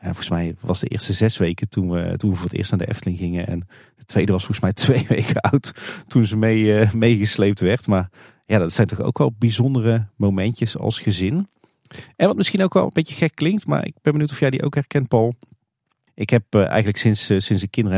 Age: 40-59